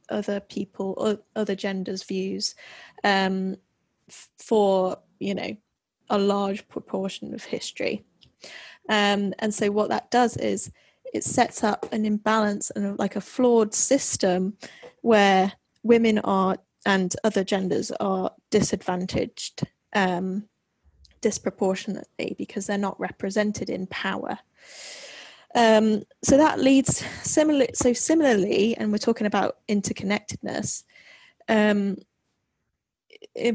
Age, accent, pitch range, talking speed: 10-29, British, 195-225 Hz, 105 wpm